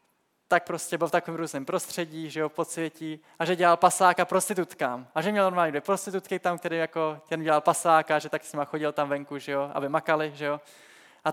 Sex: male